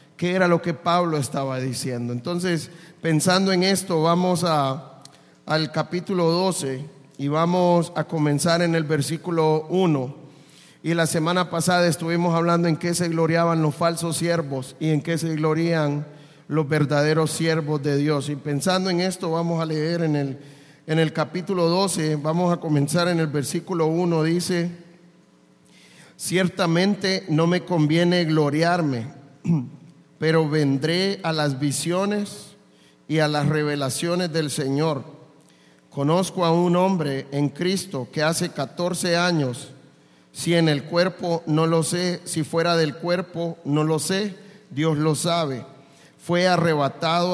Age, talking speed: 40-59, 140 wpm